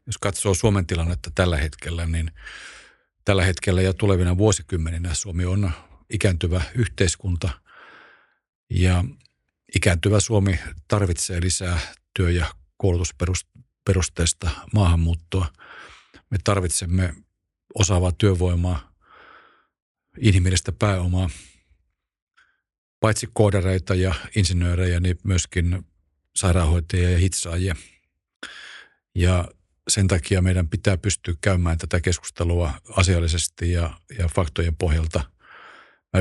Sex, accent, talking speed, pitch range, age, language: male, native, 90 wpm, 85-100 Hz, 50-69, Finnish